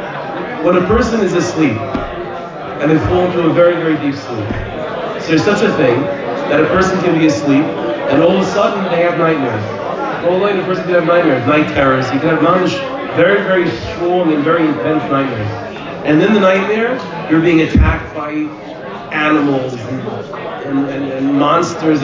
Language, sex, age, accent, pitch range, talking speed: English, male, 40-59, American, 155-200 Hz, 180 wpm